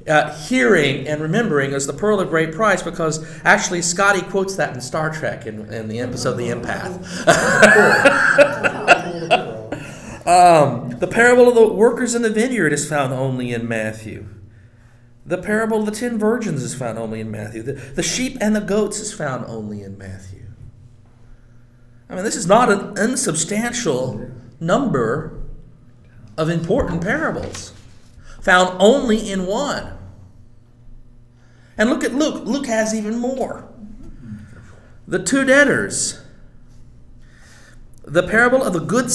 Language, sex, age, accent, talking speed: English, male, 50-69, American, 140 wpm